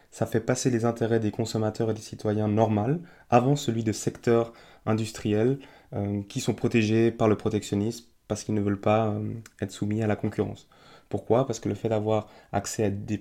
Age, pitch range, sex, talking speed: 20-39, 105-120 Hz, male, 195 wpm